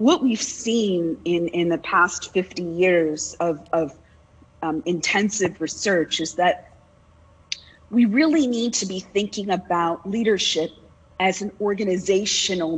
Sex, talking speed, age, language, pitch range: female, 125 wpm, 40-59, English, 165-210 Hz